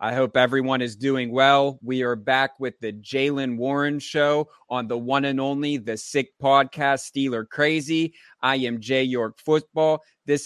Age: 30-49